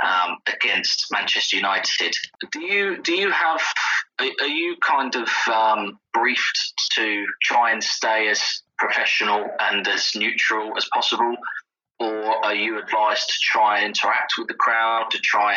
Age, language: 20-39, English